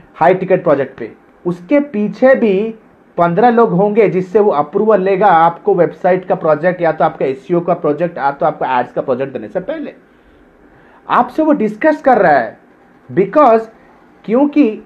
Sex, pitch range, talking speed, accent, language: male, 170-225 Hz, 165 wpm, native, Hindi